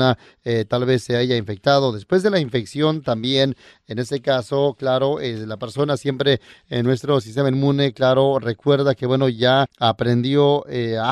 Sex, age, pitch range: male, 30-49, 125-145 Hz